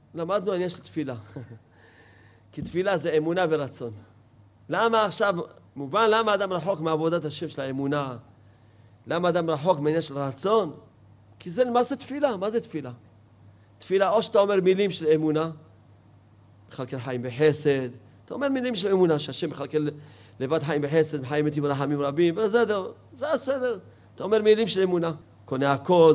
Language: Hebrew